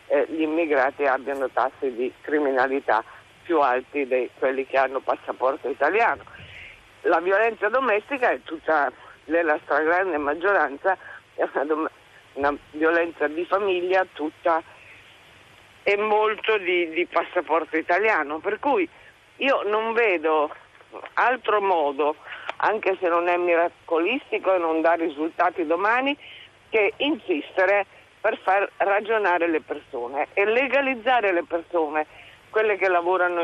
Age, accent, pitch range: 50-69, native, 155-210 Hz